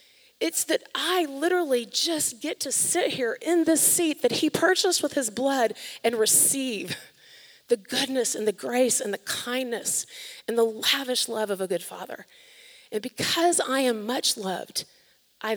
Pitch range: 220-285 Hz